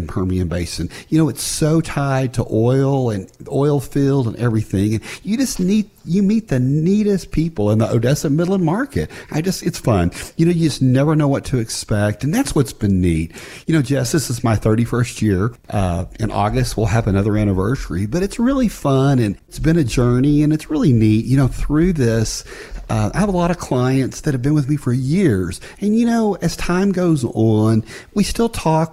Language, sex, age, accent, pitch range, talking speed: English, male, 40-59, American, 110-170 Hz, 210 wpm